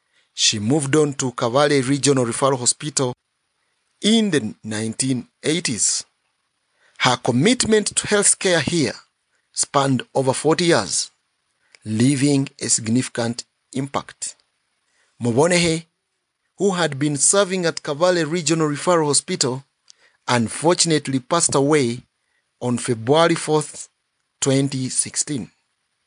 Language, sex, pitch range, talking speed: English, male, 130-165 Hz, 95 wpm